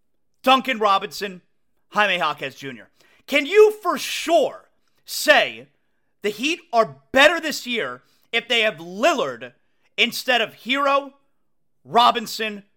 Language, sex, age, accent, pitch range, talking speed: English, male, 40-59, American, 195-280 Hz, 115 wpm